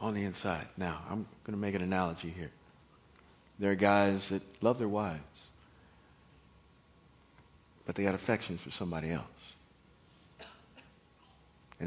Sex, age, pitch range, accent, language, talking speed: male, 50-69, 85-105 Hz, American, English, 130 wpm